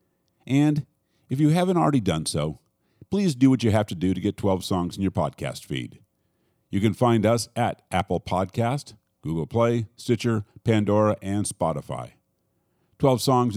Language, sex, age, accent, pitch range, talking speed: English, male, 50-69, American, 95-125 Hz, 165 wpm